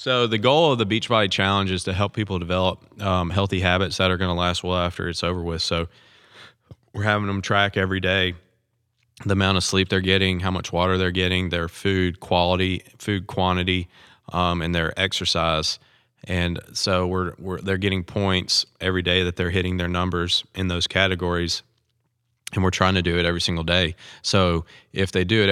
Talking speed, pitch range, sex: 200 wpm, 90-100 Hz, male